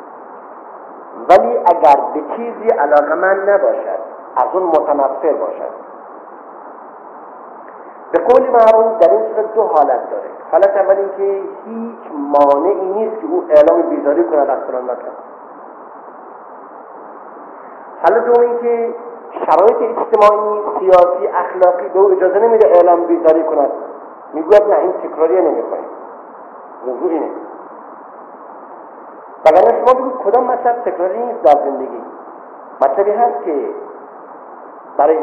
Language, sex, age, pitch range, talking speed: Persian, male, 50-69, 175-255 Hz, 115 wpm